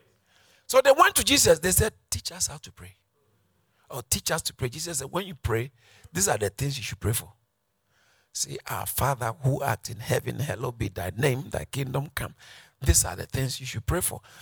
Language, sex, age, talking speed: English, male, 50-69, 215 wpm